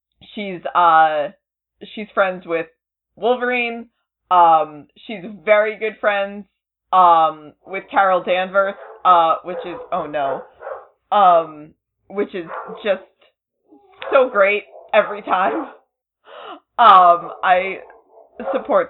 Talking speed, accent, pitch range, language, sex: 100 wpm, American, 180-240 Hz, English, female